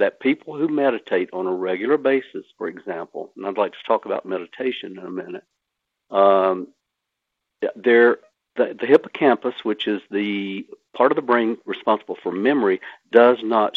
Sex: male